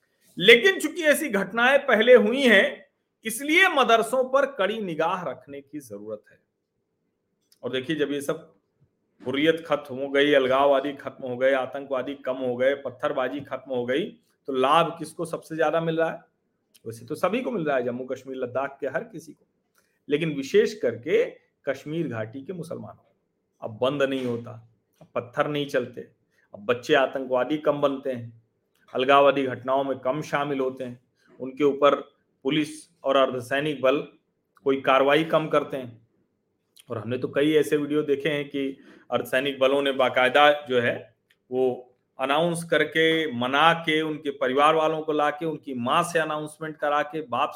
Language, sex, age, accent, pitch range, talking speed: Hindi, male, 40-59, native, 135-165 Hz, 165 wpm